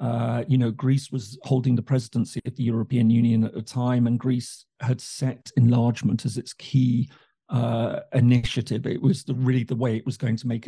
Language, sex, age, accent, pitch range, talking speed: English, male, 50-69, British, 120-135 Hz, 195 wpm